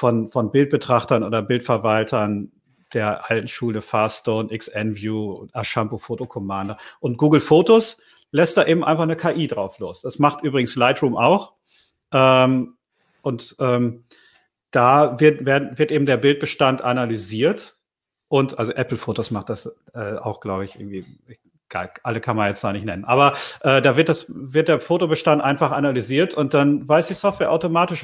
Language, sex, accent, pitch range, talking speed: German, male, German, 120-155 Hz, 150 wpm